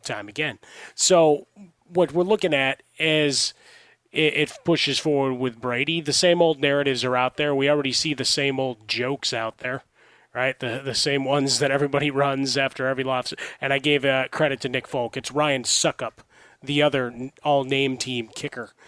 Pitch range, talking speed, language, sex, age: 130-155 Hz, 180 wpm, English, male, 30-49